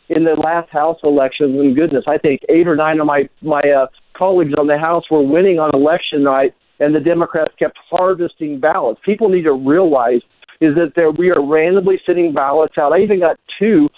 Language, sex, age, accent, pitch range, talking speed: English, male, 50-69, American, 145-175 Hz, 205 wpm